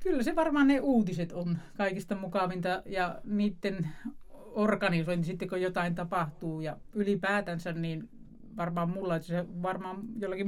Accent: native